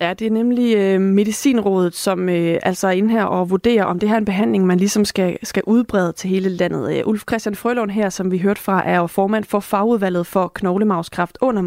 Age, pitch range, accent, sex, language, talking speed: 30-49, 185-225 Hz, native, female, Danish, 225 wpm